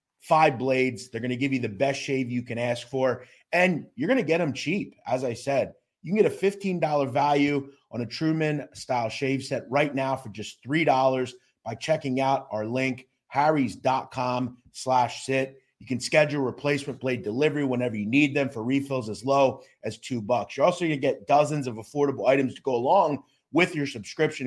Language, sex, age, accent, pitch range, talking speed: English, male, 30-49, American, 115-140 Hz, 190 wpm